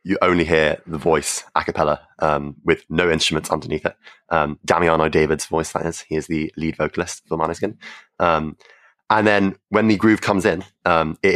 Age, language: 30-49, English